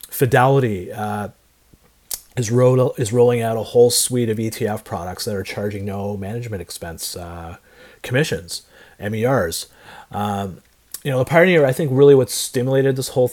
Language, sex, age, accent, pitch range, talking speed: English, male, 30-49, American, 100-125 Hz, 155 wpm